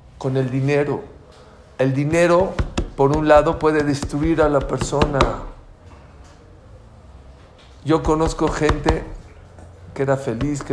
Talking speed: 110 wpm